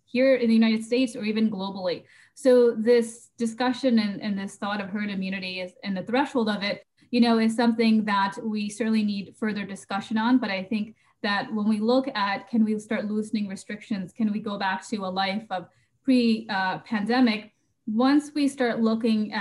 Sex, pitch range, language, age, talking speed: female, 200-235 Hz, English, 20-39, 190 wpm